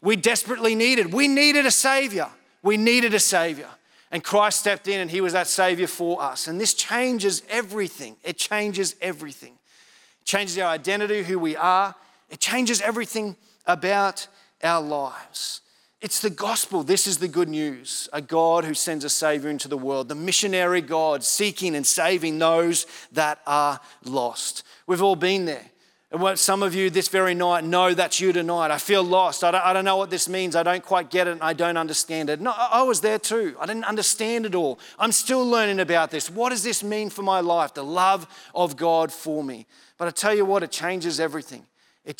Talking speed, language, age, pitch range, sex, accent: 205 wpm, English, 30-49, 165-205 Hz, male, Australian